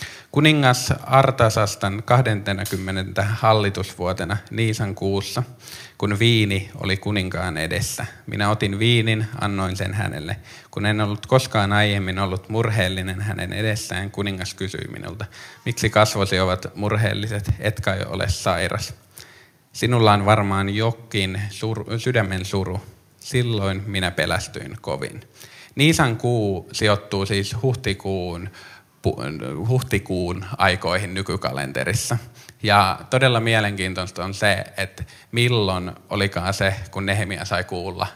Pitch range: 95-115 Hz